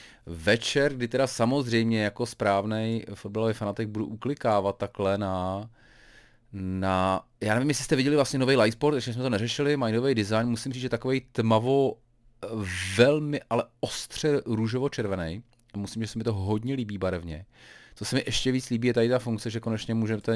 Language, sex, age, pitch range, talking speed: Czech, male, 30-49, 100-125 Hz, 170 wpm